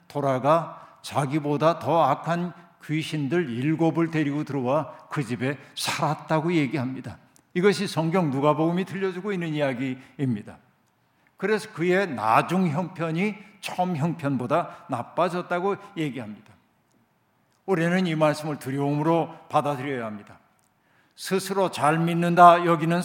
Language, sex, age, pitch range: Korean, male, 50-69, 150-185 Hz